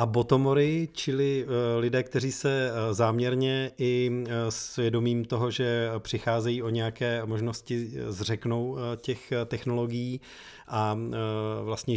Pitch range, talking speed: 110-120 Hz, 100 wpm